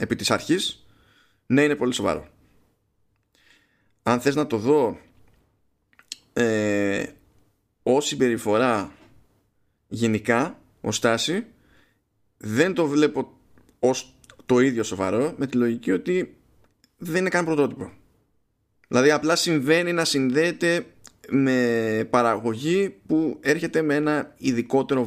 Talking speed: 105 wpm